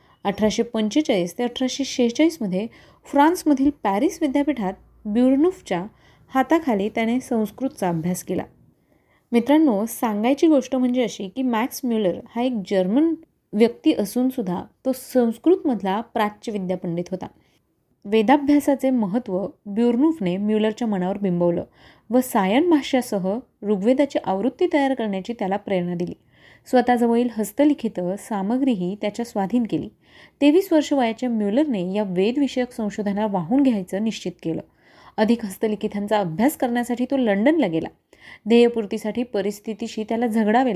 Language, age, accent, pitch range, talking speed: Marathi, 30-49, native, 205-265 Hz, 110 wpm